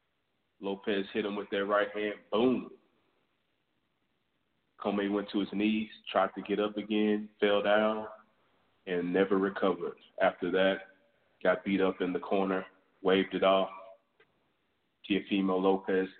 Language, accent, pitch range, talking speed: English, American, 95-105 Hz, 135 wpm